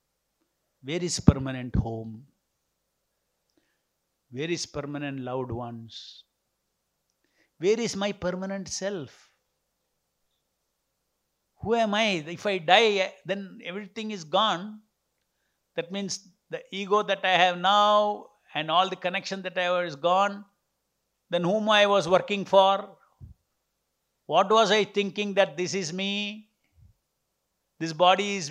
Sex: male